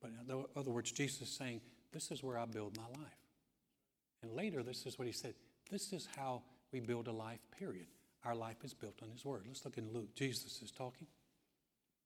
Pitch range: 125-150 Hz